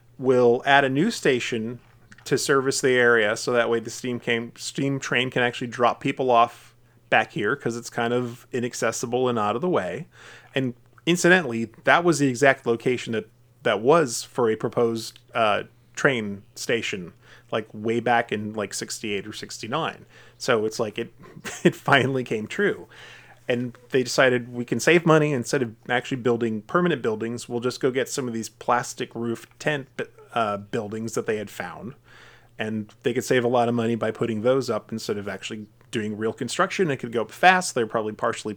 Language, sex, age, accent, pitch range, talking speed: English, male, 30-49, American, 115-130 Hz, 190 wpm